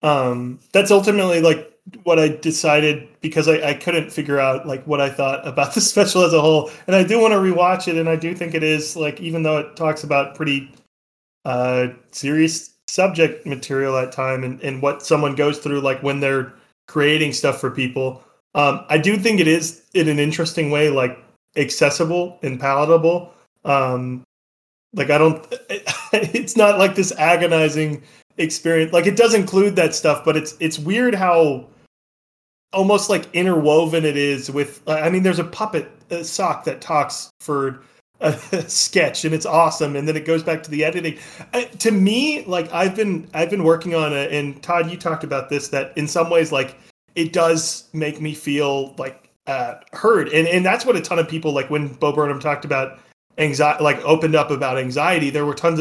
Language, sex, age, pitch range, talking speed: English, male, 30-49, 140-170 Hz, 195 wpm